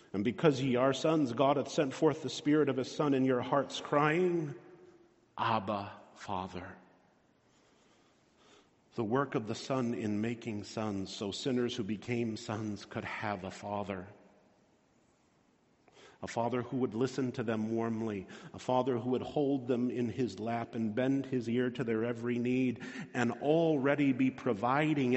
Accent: American